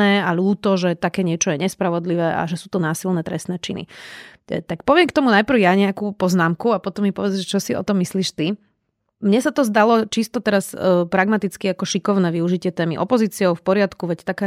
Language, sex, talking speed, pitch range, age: Slovak, female, 200 wpm, 180-205 Hz, 30-49